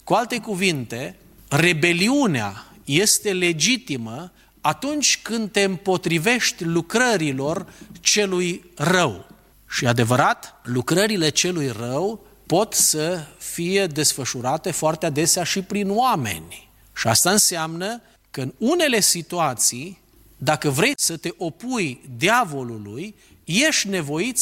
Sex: male